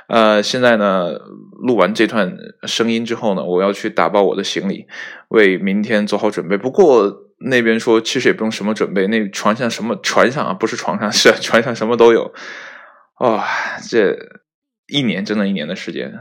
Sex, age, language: male, 20-39, Chinese